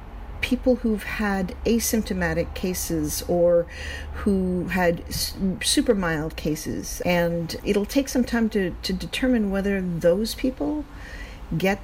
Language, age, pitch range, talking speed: English, 50-69, 165-215 Hz, 115 wpm